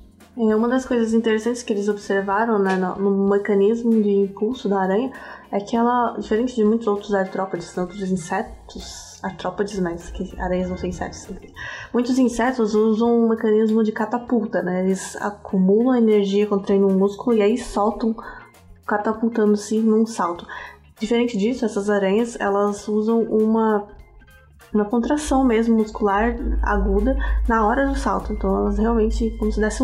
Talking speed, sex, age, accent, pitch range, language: 155 wpm, female, 10-29, Brazilian, 190-225 Hz, Portuguese